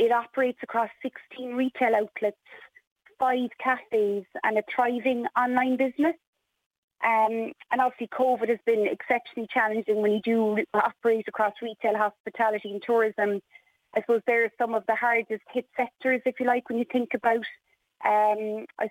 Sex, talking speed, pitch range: female, 155 wpm, 215-245 Hz